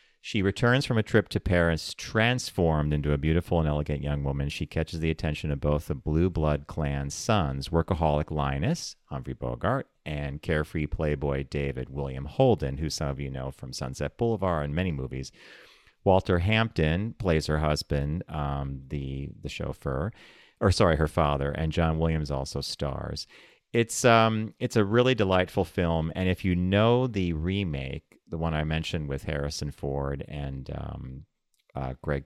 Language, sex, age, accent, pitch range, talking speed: English, male, 40-59, American, 75-105 Hz, 165 wpm